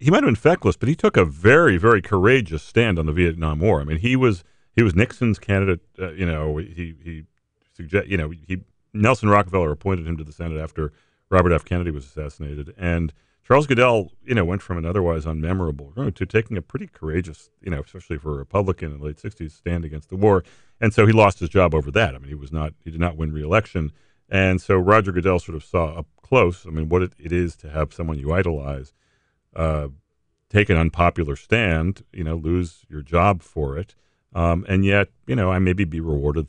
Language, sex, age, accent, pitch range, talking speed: English, male, 40-59, American, 75-95 Hz, 220 wpm